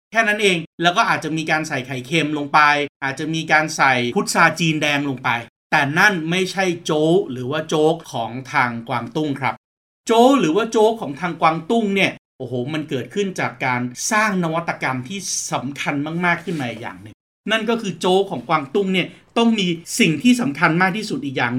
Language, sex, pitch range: Thai, male, 150-210 Hz